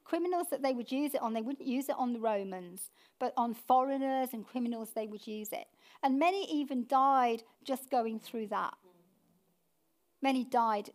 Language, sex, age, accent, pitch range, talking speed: English, female, 50-69, British, 225-280 Hz, 180 wpm